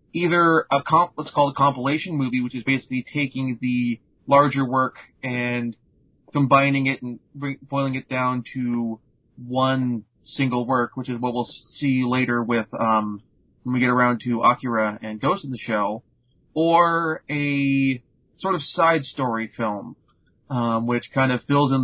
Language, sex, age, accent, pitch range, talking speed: English, male, 30-49, American, 120-145 Hz, 160 wpm